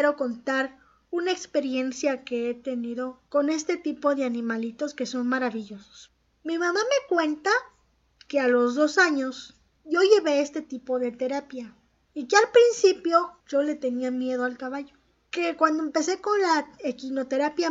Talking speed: 155 wpm